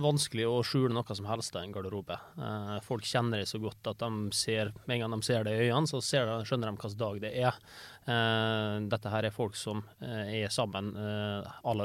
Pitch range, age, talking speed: 105-120 Hz, 20-39, 215 wpm